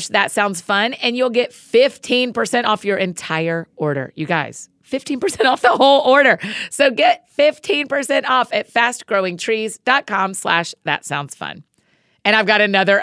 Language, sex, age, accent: English, female, 40-59, American